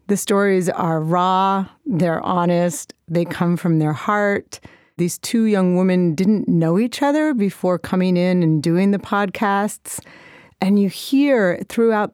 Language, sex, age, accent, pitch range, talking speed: English, female, 40-59, American, 170-205 Hz, 150 wpm